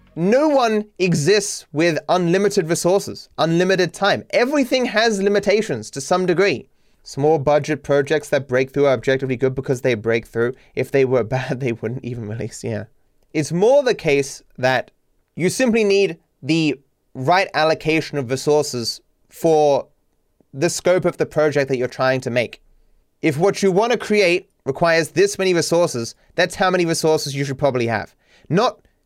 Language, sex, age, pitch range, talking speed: English, male, 30-49, 135-180 Hz, 165 wpm